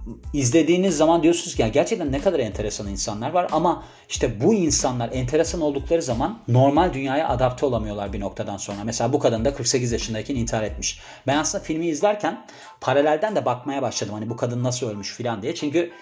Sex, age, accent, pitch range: male, 40-59, native, 120-150 Hz